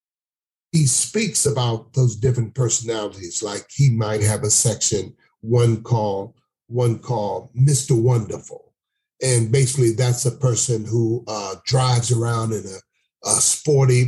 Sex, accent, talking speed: male, American, 130 wpm